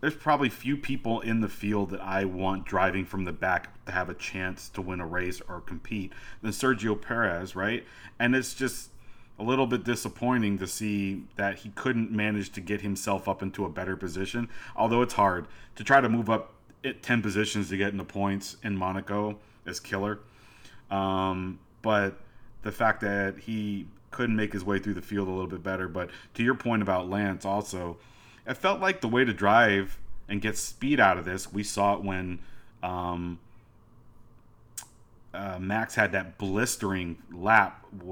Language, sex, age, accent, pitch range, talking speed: English, male, 30-49, American, 95-115 Hz, 180 wpm